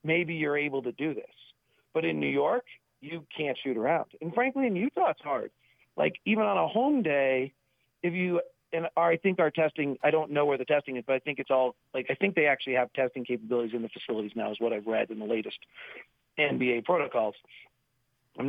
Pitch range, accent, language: 135-170 Hz, American, English